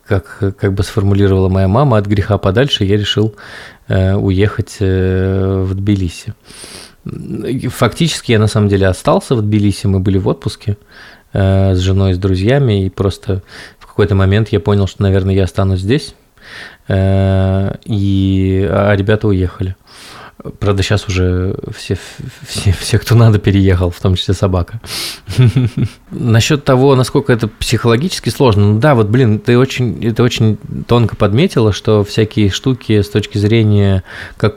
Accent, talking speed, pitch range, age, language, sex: native, 135 wpm, 95-115 Hz, 20-39, Russian, male